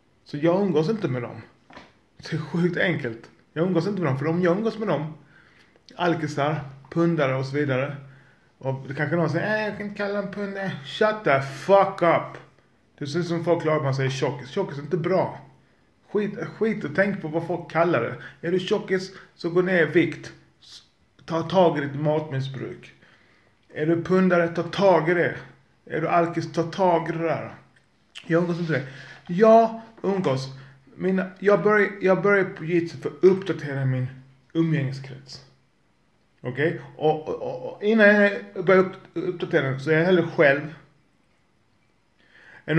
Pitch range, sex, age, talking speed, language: 145-185 Hz, male, 30-49, 170 wpm, Swedish